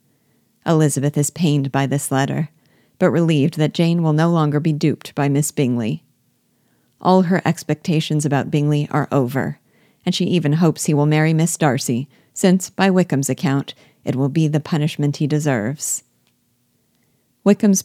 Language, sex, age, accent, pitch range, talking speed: English, female, 50-69, American, 140-170 Hz, 155 wpm